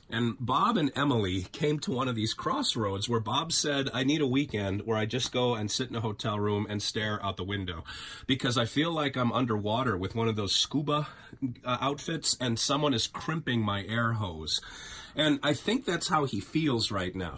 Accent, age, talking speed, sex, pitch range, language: American, 30-49, 205 wpm, male, 110-145 Hz, English